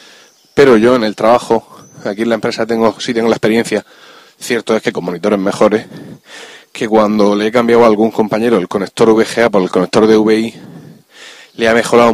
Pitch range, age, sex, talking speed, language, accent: 105-130 Hz, 30-49, male, 195 wpm, Spanish, Spanish